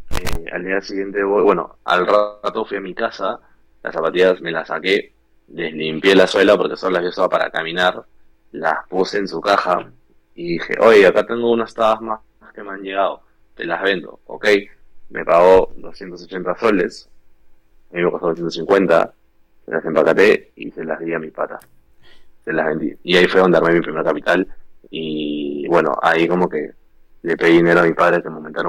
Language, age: Spanish, 20-39